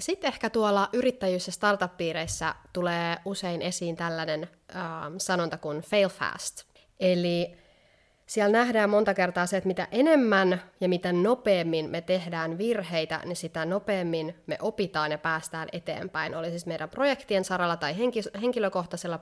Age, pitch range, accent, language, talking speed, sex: 20-39, 165-205 Hz, native, Finnish, 135 wpm, female